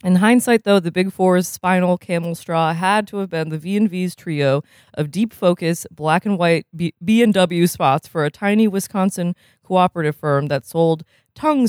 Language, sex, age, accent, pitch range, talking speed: English, female, 20-39, American, 155-200 Hz, 155 wpm